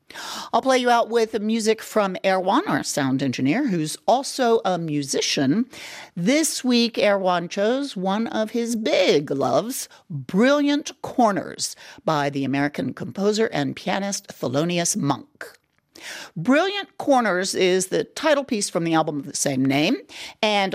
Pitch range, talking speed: 165-255 Hz, 140 wpm